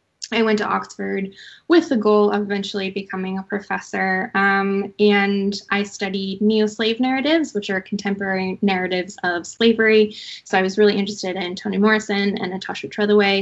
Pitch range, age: 190-210 Hz, 10-29